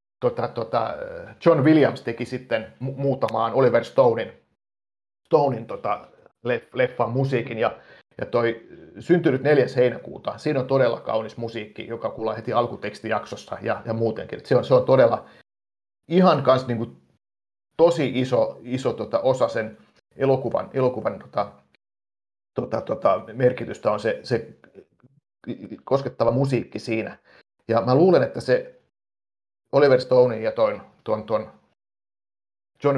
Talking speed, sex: 125 wpm, male